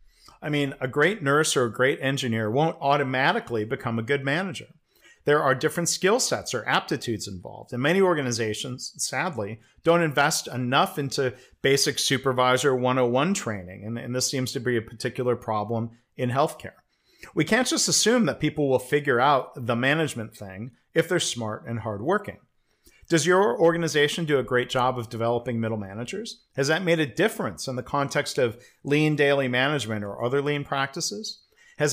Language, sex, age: English, male, 40-59